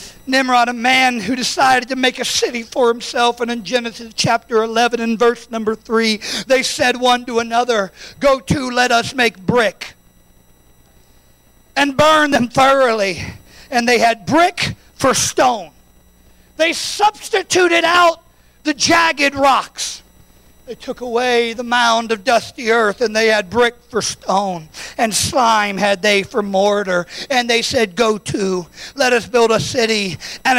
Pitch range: 190-255 Hz